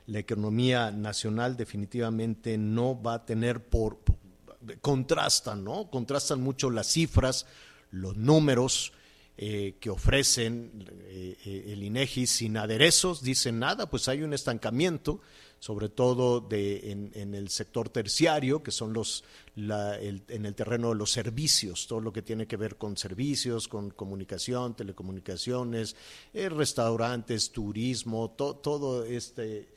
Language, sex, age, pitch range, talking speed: Spanish, male, 50-69, 105-130 Hz, 135 wpm